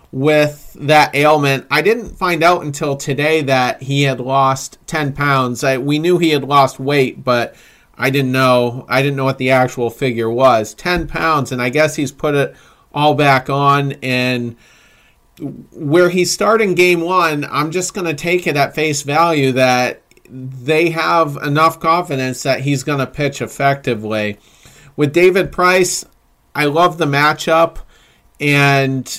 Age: 40-59